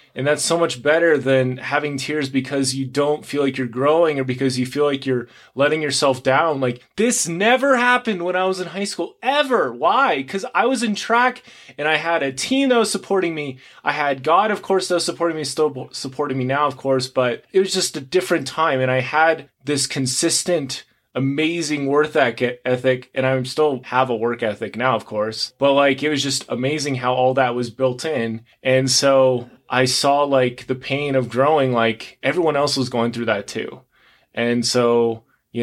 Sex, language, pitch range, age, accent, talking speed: male, English, 125-155 Hz, 20-39, American, 205 wpm